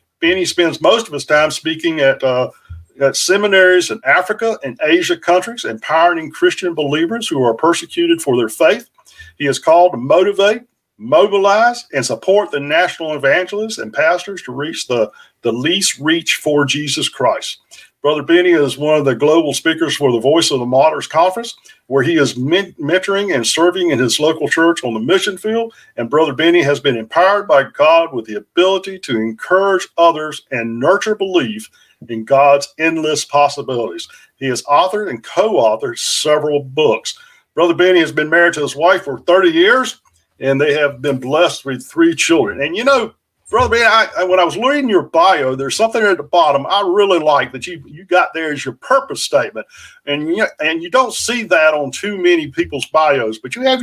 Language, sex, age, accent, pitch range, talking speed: English, male, 50-69, American, 145-220 Hz, 185 wpm